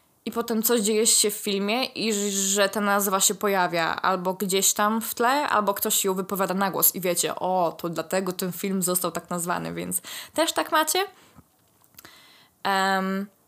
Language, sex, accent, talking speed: Polish, female, native, 175 wpm